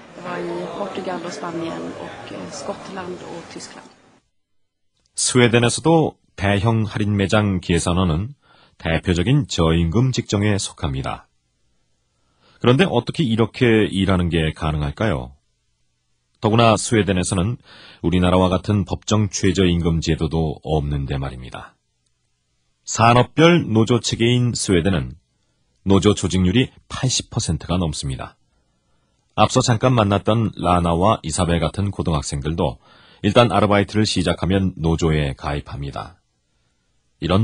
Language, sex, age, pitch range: Korean, male, 30-49, 80-110 Hz